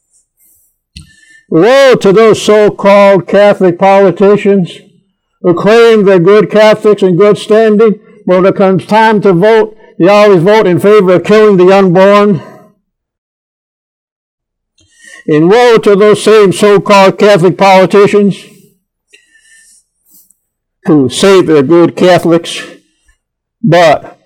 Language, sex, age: English, male, 60-79